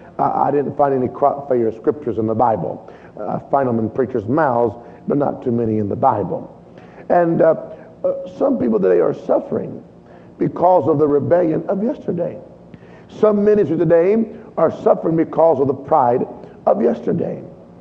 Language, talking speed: English, 170 wpm